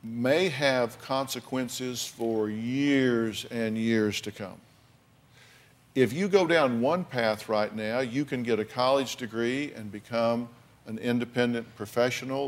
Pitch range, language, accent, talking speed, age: 115-135 Hz, English, American, 135 wpm, 50-69